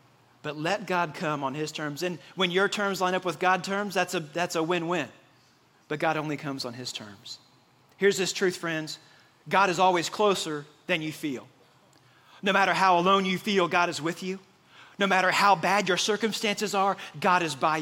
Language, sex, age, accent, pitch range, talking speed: English, male, 40-59, American, 135-180 Hz, 195 wpm